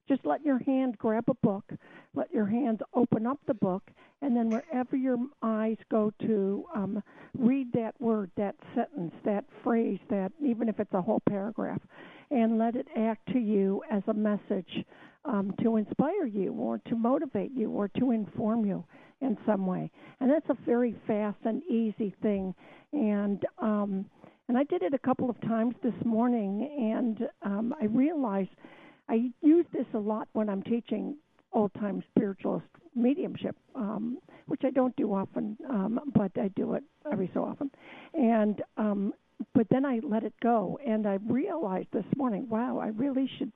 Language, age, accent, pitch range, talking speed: English, 60-79, American, 210-255 Hz, 175 wpm